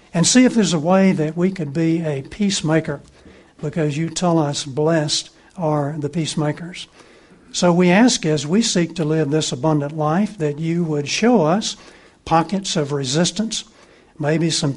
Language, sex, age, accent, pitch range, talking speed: English, male, 60-79, American, 150-175 Hz, 165 wpm